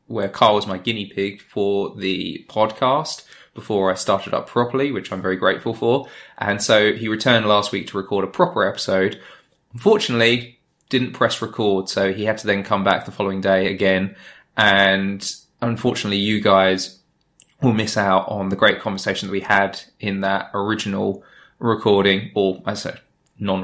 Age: 20-39